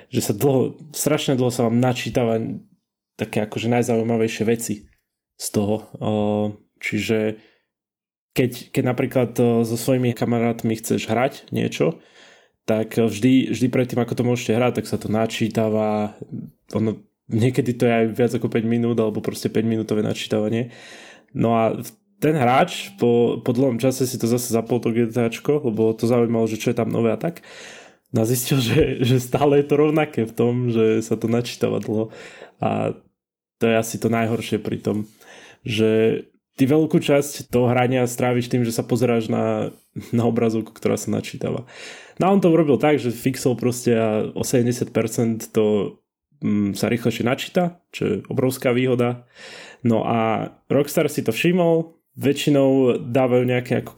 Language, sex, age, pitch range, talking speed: Slovak, male, 20-39, 110-130 Hz, 160 wpm